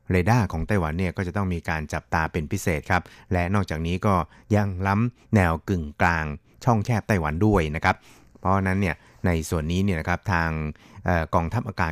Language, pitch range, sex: Thai, 80-100 Hz, male